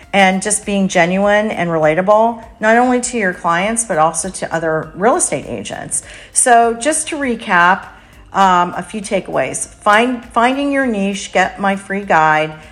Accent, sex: American, female